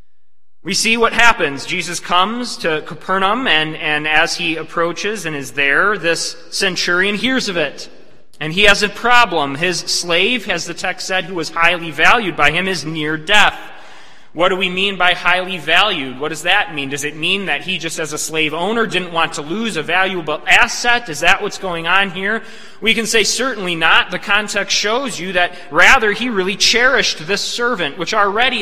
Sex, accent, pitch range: male, American, 150-200 Hz